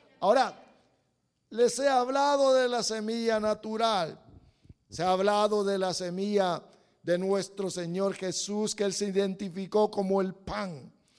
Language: English